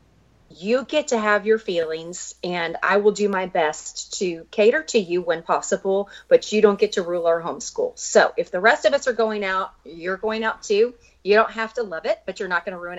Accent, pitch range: American, 190-255 Hz